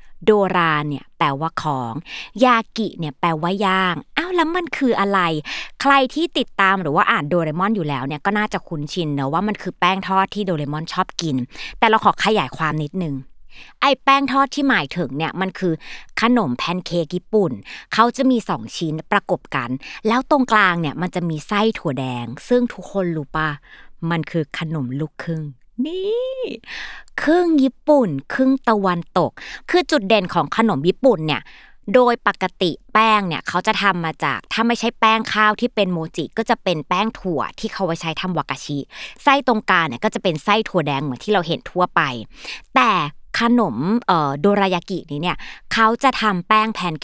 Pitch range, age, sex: 160-225 Hz, 20-39, female